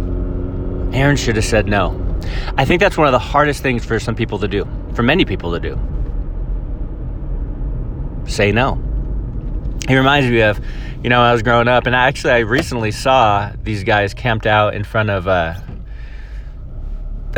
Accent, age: American, 30-49